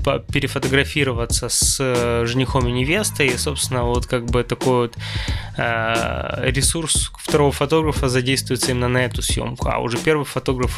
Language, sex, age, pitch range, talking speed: Russian, male, 20-39, 115-135 Hz, 135 wpm